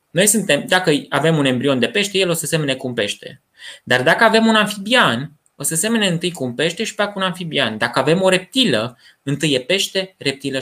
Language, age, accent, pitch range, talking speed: Romanian, 20-39, native, 130-185 Hz, 220 wpm